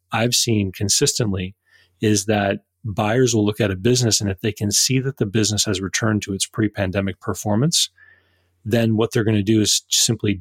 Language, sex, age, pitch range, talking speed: English, male, 30-49, 100-115 Hz, 190 wpm